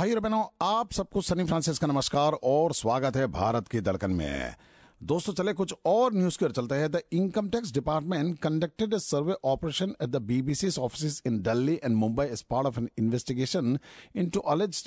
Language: Japanese